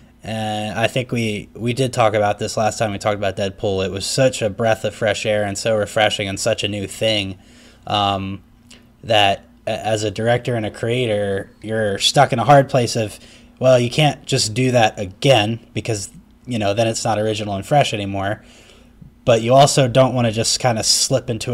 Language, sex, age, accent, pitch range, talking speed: English, male, 20-39, American, 105-120 Hz, 205 wpm